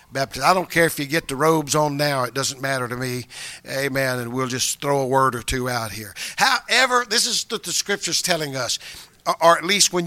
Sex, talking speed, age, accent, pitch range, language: male, 230 wpm, 50-69, American, 150-215 Hz, English